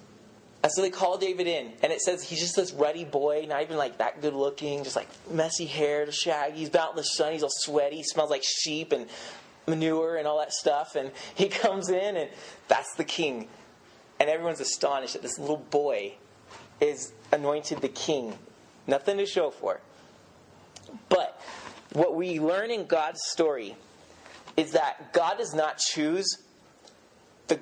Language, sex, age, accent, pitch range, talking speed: English, male, 30-49, American, 150-190 Hz, 175 wpm